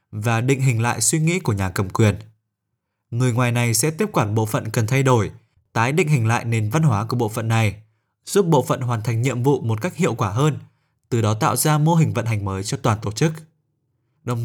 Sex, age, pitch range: male, 20-39, 110-145 Hz